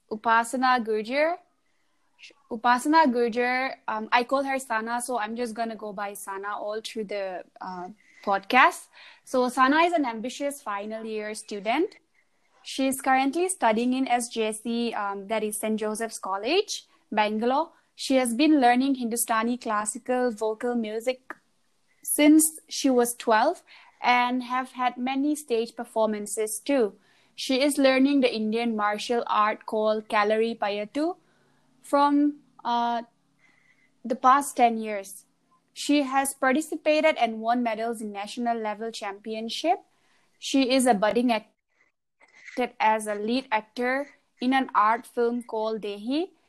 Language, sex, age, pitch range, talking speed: English, female, 20-39, 220-270 Hz, 135 wpm